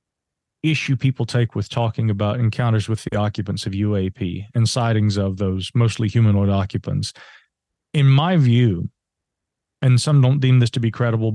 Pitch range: 110-125 Hz